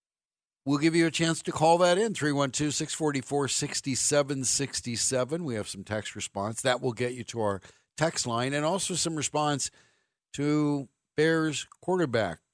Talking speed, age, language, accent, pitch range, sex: 145 wpm, 60-79, English, American, 100-140 Hz, male